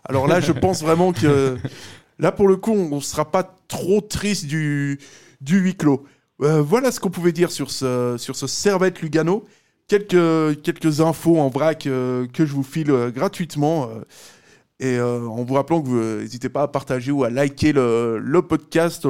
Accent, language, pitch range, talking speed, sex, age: French, French, 135-175 Hz, 195 wpm, male, 20-39